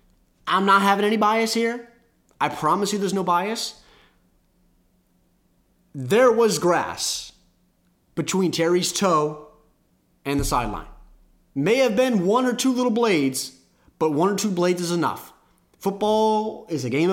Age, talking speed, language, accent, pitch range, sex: 30-49, 140 wpm, English, American, 155-245 Hz, male